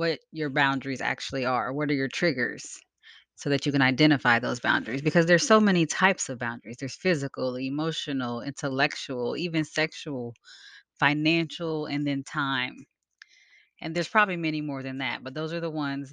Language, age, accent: English, 20-39, American